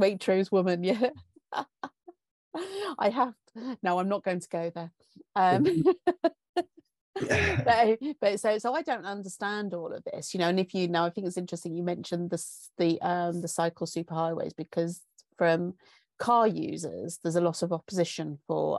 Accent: British